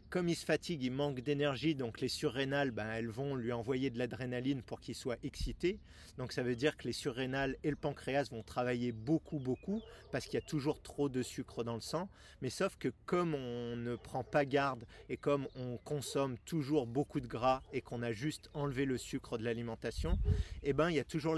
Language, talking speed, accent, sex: French, 220 wpm, French, male